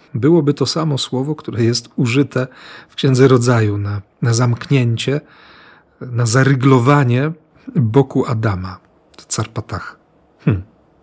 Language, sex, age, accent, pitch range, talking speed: Polish, male, 40-59, native, 115-145 Hz, 105 wpm